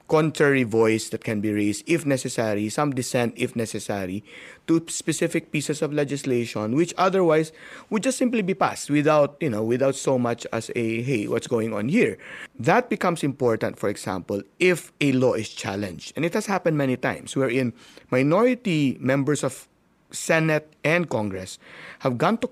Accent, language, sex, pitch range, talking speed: Filipino, English, male, 120-165 Hz, 170 wpm